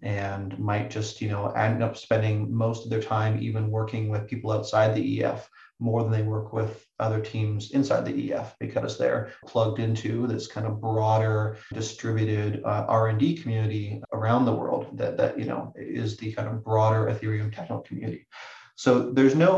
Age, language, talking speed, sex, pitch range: 30-49, English, 180 wpm, male, 110-115 Hz